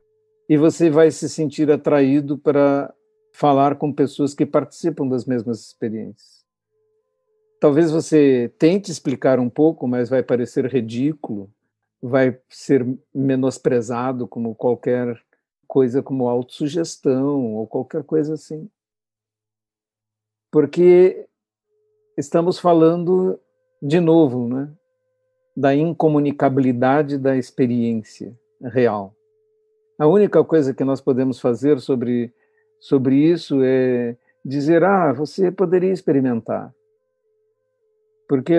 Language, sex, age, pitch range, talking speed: Portuguese, male, 50-69, 130-180 Hz, 100 wpm